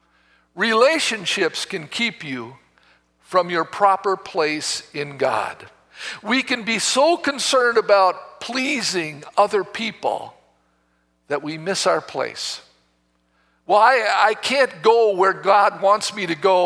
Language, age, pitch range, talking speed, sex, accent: English, 50-69, 155-225 Hz, 125 wpm, male, American